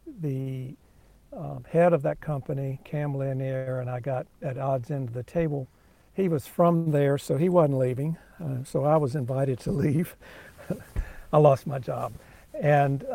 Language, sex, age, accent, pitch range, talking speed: English, male, 60-79, American, 130-150 Hz, 165 wpm